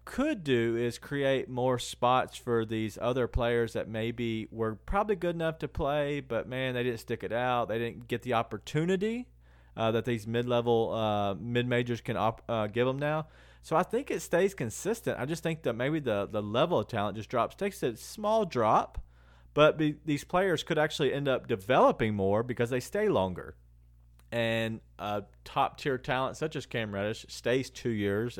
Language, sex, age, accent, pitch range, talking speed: English, male, 40-59, American, 100-130 Hz, 185 wpm